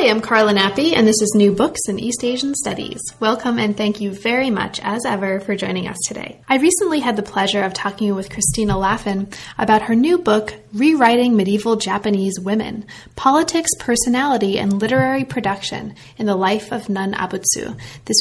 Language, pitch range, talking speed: English, 200-250 Hz, 180 wpm